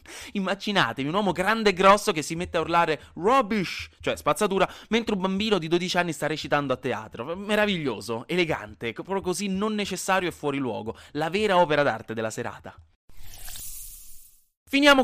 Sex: male